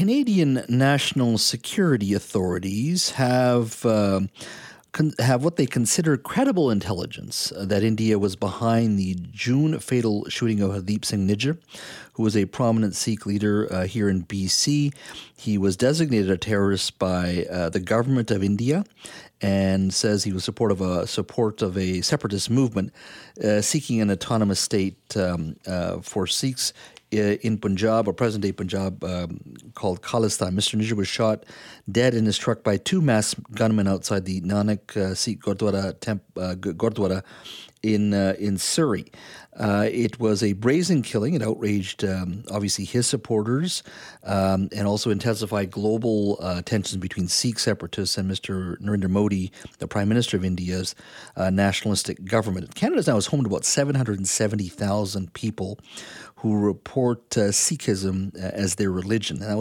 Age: 40-59